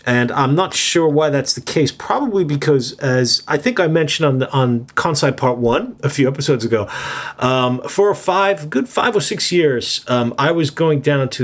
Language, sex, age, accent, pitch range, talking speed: English, male, 30-49, American, 115-150 Hz, 210 wpm